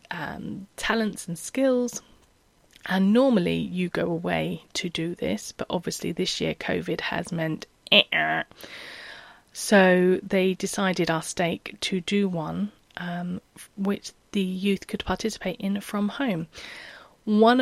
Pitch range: 165-210 Hz